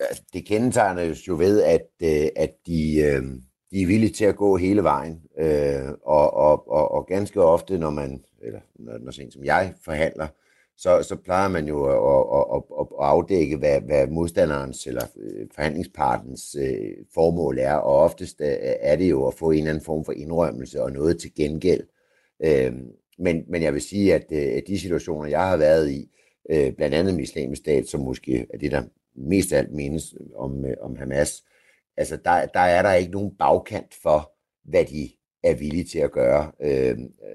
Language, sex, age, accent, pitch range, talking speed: Danish, male, 60-79, native, 75-105 Hz, 170 wpm